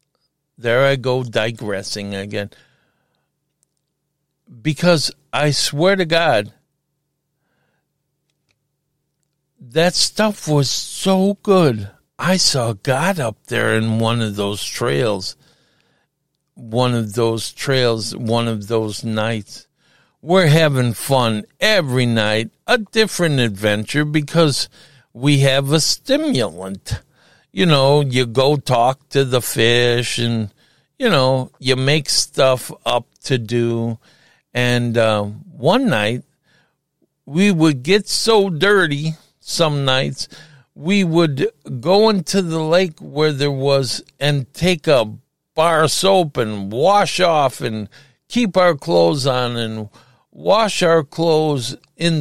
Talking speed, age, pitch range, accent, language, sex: 115 wpm, 60-79, 120-160 Hz, American, English, male